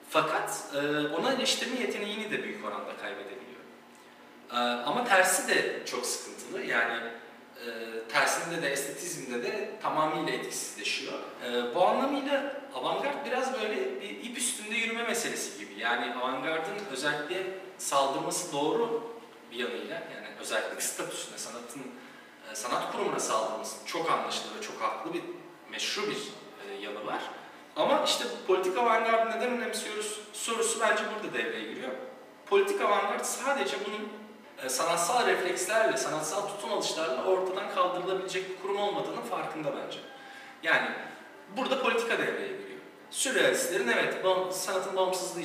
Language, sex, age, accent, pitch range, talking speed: Turkish, male, 40-59, native, 170-250 Hz, 125 wpm